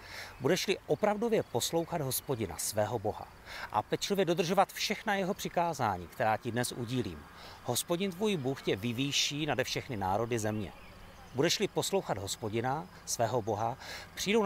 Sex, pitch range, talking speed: male, 100-170 Hz, 130 wpm